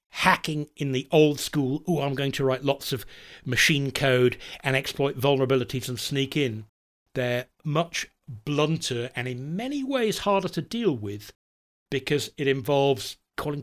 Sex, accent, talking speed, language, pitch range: male, British, 155 wpm, English, 120-150 Hz